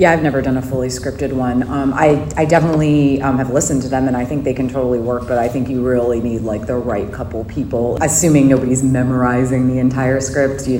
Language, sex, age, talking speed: English, female, 30-49, 235 wpm